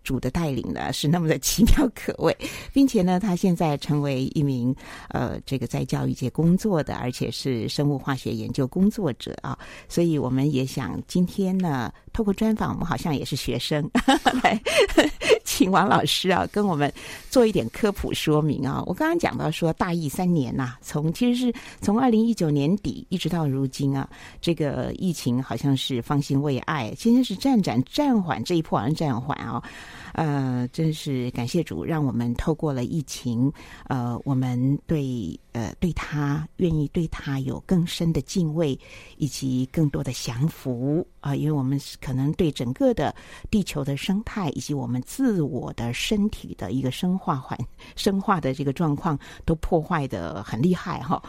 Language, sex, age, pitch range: Chinese, female, 50-69, 130-180 Hz